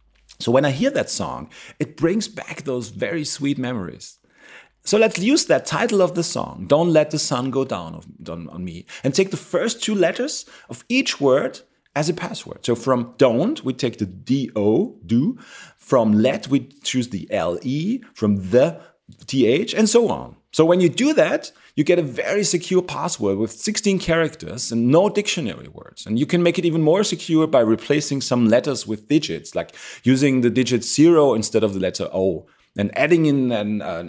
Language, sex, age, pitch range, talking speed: English, male, 40-59, 120-180 Hz, 190 wpm